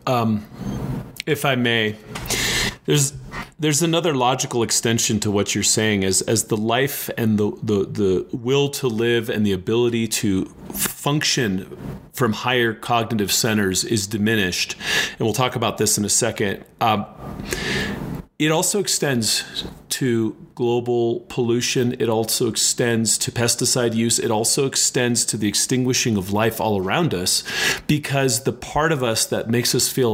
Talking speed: 150 wpm